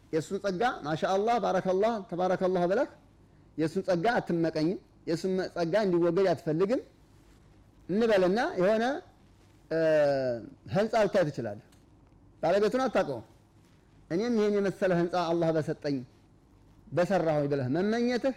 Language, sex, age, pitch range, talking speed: Amharic, male, 30-49, 130-195 Hz, 100 wpm